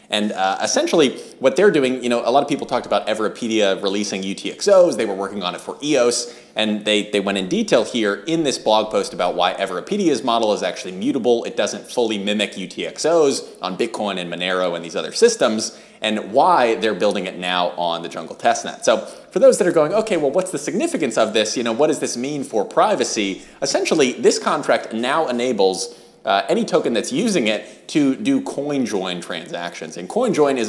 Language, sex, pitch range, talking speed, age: English, male, 100-140 Hz, 205 wpm, 30-49